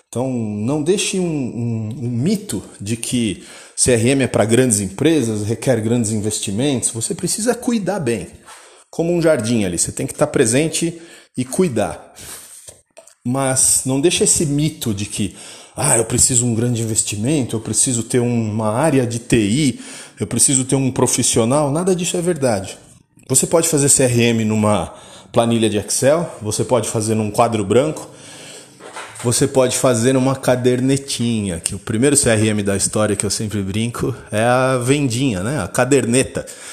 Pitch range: 110-135 Hz